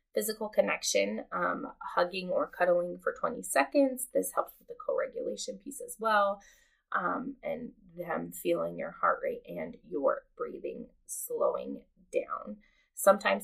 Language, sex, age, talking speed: English, female, 20-39, 135 wpm